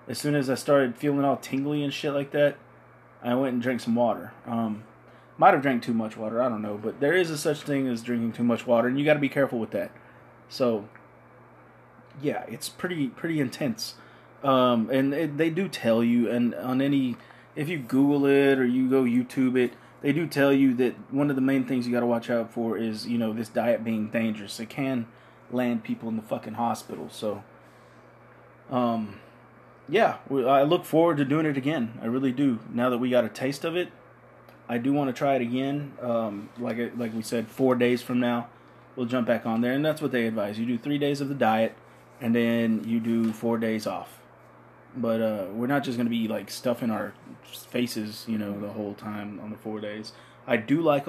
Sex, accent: male, American